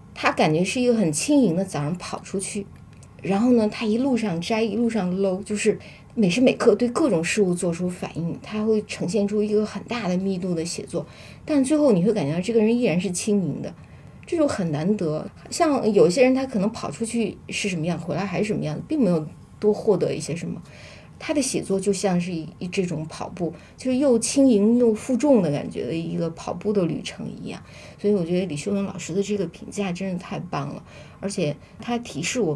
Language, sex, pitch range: Chinese, female, 175-220 Hz